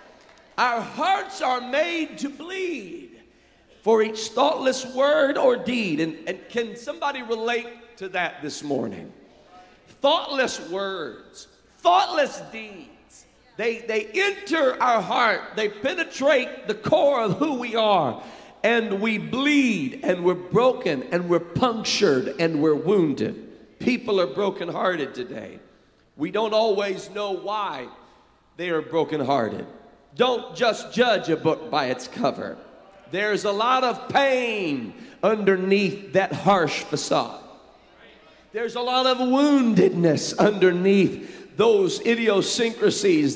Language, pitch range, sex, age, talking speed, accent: English, 200-280 Hz, male, 50-69, 125 wpm, American